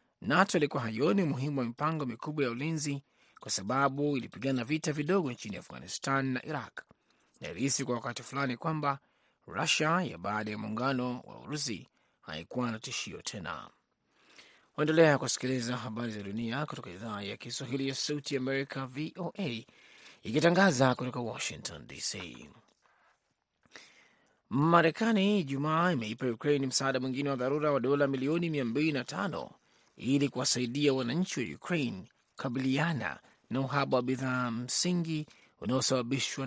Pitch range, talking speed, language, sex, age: 125-150 Hz, 125 wpm, Swahili, male, 30-49